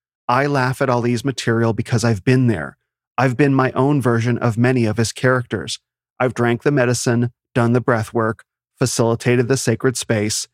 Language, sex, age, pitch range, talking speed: English, male, 30-49, 115-135 Hz, 170 wpm